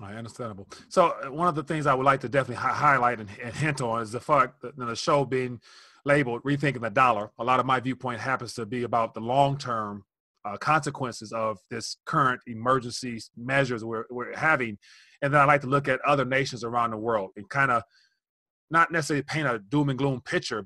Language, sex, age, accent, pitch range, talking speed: English, male, 30-49, American, 120-145 Hz, 205 wpm